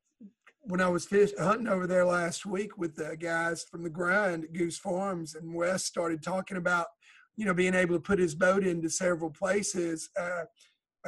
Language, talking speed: English, 185 wpm